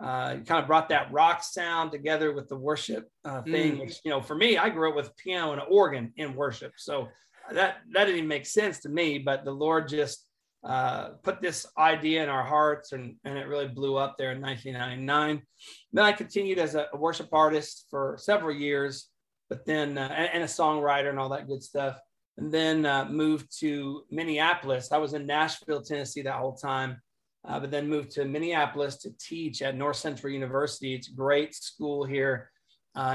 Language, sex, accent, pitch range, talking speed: English, male, American, 135-155 Hz, 200 wpm